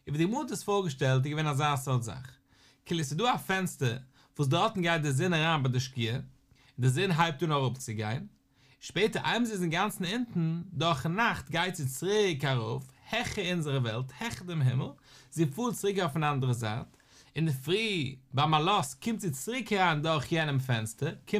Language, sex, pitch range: English, male, 130-180 Hz